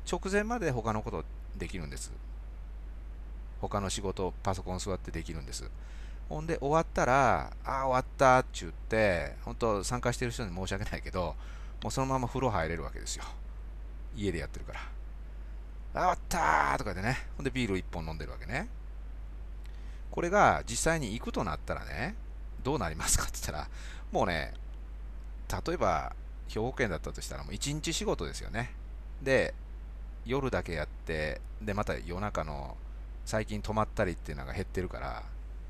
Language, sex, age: Japanese, male, 40-59